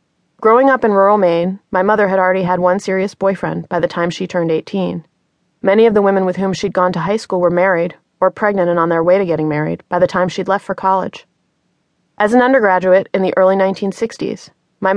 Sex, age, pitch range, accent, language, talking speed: female, 30-49, 170-200 Hz, American, English, 225 wpm